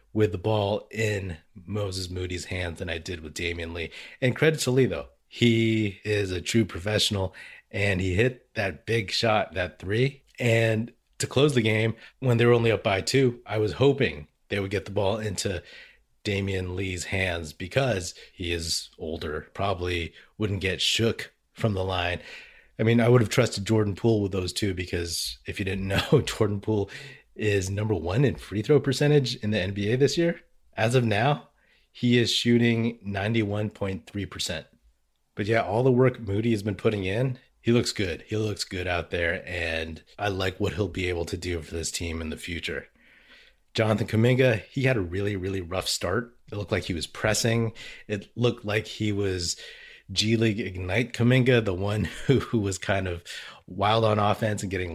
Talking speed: 190 wpm